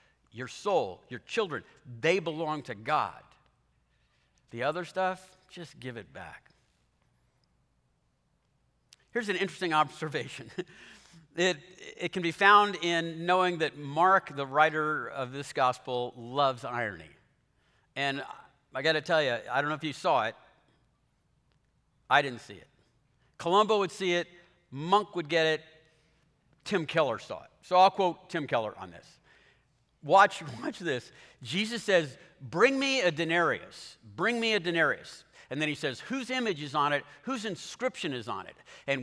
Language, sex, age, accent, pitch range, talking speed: English, male, 50-69, American, 150-195 Hz, 150 wpm